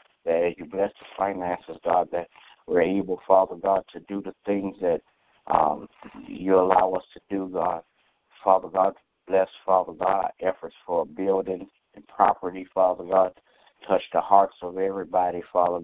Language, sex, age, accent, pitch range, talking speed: English, male, 60-79, American, 90-95 Hz, 155 wpm